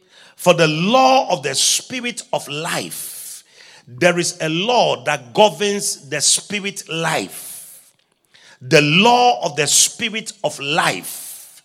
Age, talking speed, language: 40-59, 125 wpm, English